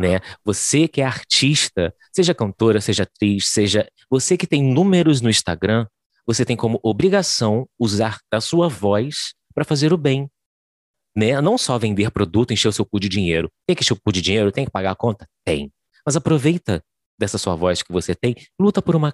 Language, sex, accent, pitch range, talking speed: Portuguese, male, Brazilian, 95-140 Hz, 200 wpm